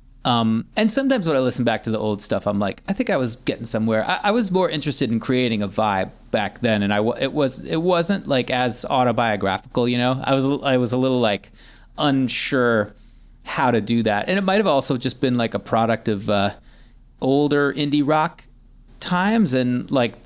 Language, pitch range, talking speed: English, 110-145 Hz, 205 wpm